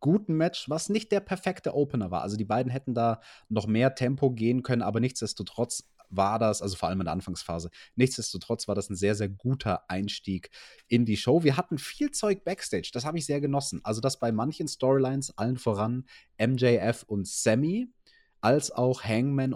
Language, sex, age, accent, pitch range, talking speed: German, male, 30-49, German, 105-145 Hz, 190 wpm